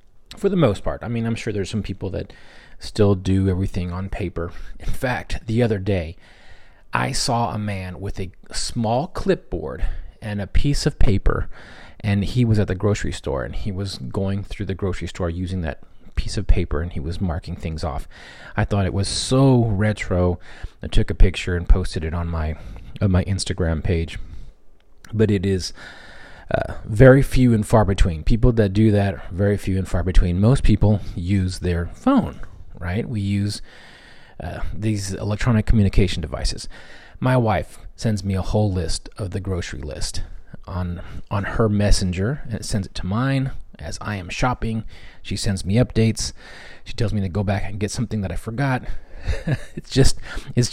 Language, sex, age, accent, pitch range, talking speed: English, male, 30-49, American, 90-110 Hz, 180 wpm